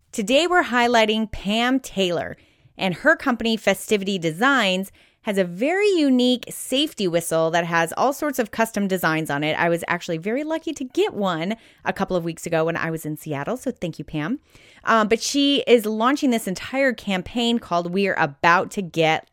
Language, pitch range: English, 170-245 Hz